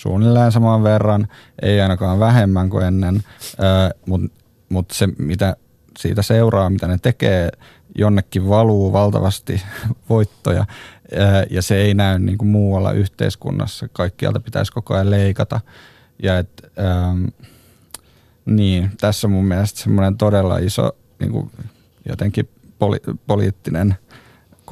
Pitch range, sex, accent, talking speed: 90-110 Hz, male, native, 95 wpm